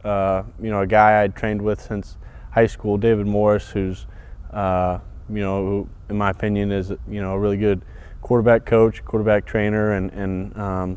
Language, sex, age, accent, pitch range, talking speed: English, male, 20-39, American, 95-105 Hz, 180 wpm